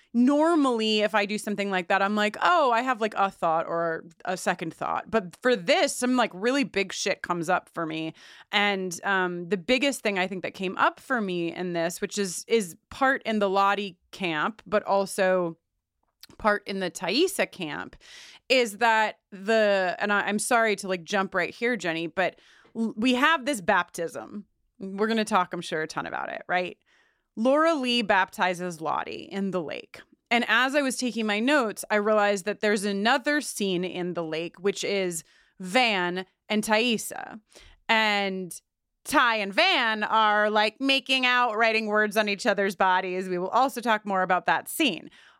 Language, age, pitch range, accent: English, 30-49, 185-245 Hz, American